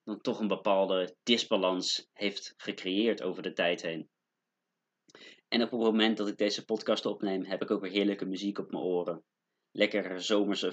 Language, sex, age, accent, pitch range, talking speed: Dutch, male, 30-49, Dutch, 95-110 Hz, 175 wpm